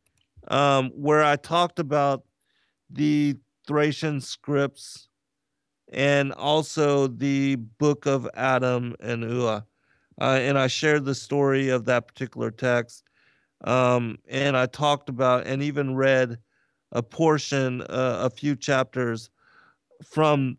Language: English